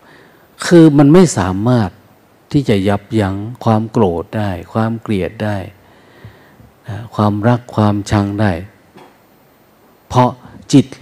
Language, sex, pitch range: Thai, male, 100-125 Hz